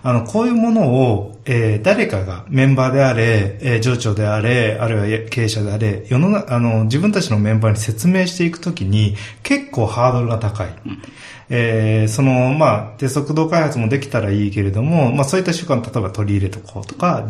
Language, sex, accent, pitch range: Japanese, male, native, 110-145 Hz